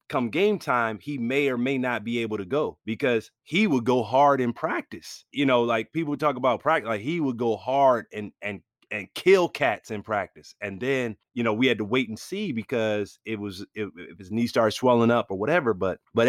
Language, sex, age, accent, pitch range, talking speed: English, male, 30-49, American, 105-125 Hz, 225 wpm